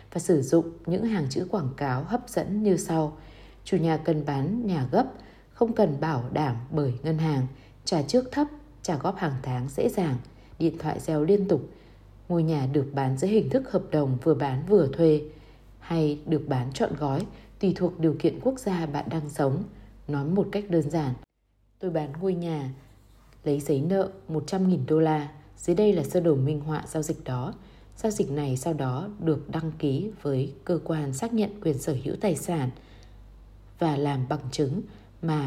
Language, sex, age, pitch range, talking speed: Vietnamese, female, 20-39, 135-180 Hz, 195 wpm